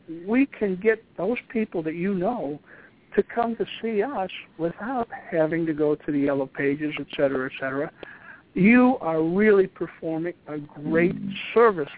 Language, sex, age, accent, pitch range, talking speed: English, male, 60-79, American, 150-200 Hz, 160 wpm